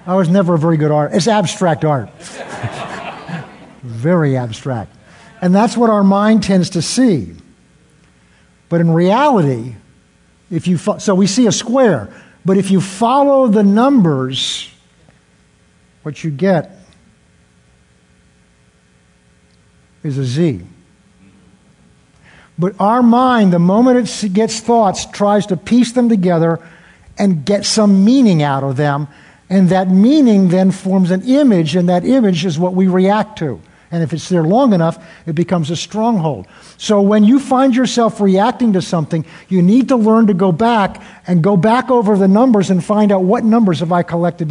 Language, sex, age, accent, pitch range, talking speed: English, male, 60-79, American, 165-215 Hz, 160 wpm